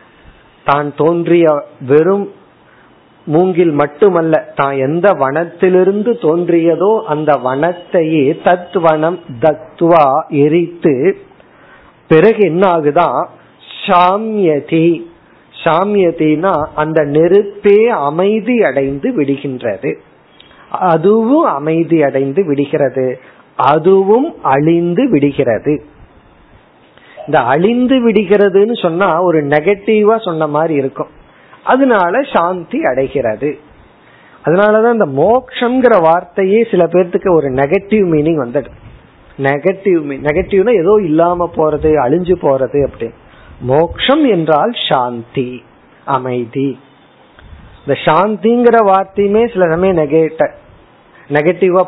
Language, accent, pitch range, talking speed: Tamil, native, 150-200 Hz, 70 wpm